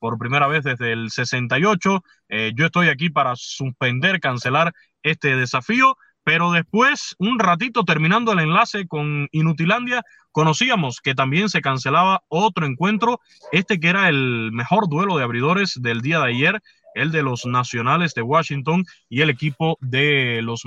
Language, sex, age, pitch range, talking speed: Spanish, male, 20-39, 130-180 Hz, 155 wpm